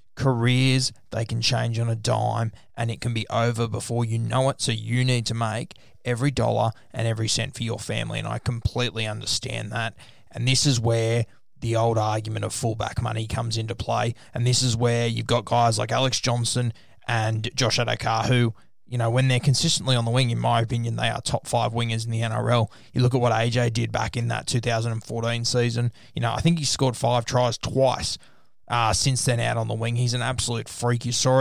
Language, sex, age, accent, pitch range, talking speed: English, male, 20-39, Australian, 115-125 Hz, 215 wpm